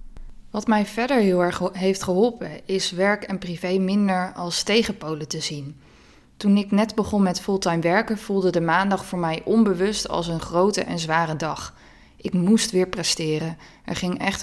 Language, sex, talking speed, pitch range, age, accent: Dutch, female, 175 wpm, 175-205 Hz, 20-39, Dutch